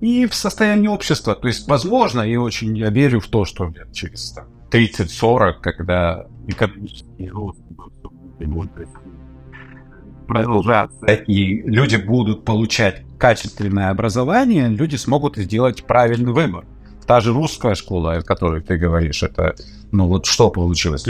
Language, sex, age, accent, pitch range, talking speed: Russian, male, 50-69, native, 90-120 Hz, 115 wpm